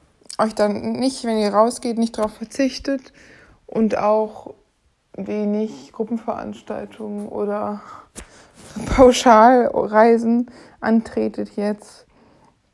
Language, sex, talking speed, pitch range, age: German, female, 80 wpm, 200-220 Hz, 60-79